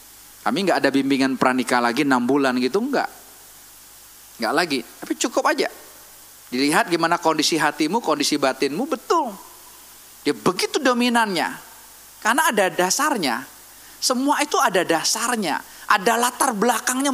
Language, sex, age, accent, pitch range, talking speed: Indonesian, male, 30-49, native, 175-250 Hz, 125 wpm